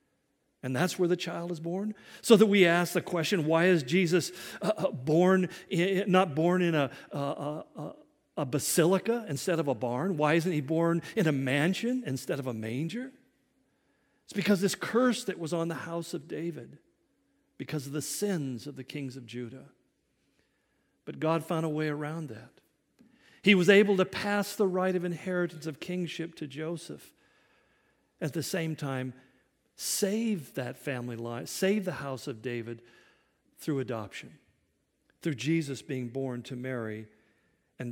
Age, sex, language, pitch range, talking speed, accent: 50-69, male, English, 135-190 Hz, 155 wpm, American